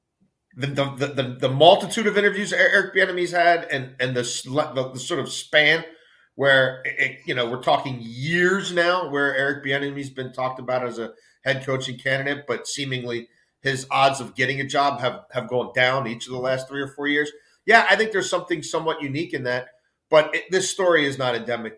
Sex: male